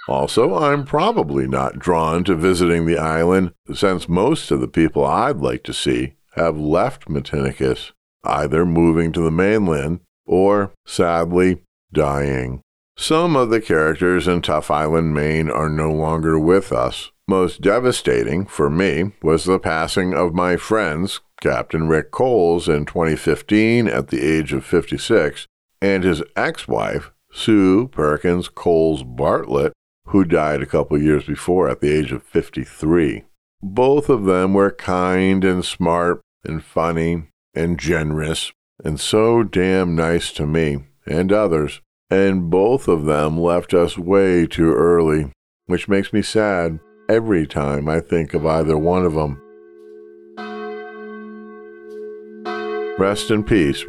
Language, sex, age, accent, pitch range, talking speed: English, male, 50-69, American, 75-95 Hz, 140 wpm